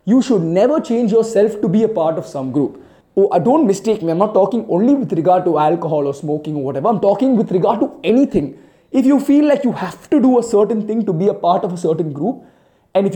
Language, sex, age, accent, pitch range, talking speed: Tamil, male, 20-39, native, 165-220 Hz, 250 wpm